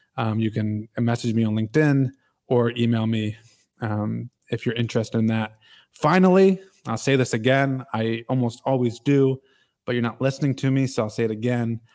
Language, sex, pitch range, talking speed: English, male, 110-125 Hz, 170 wpm